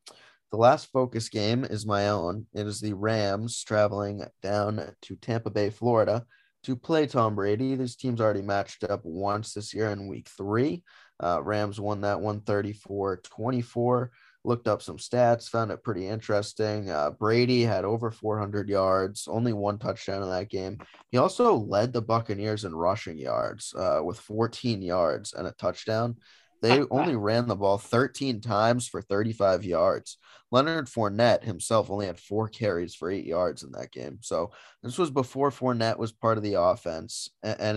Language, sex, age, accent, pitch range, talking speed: English, male, 20-39, American, 100-115 Hz, 170 wpm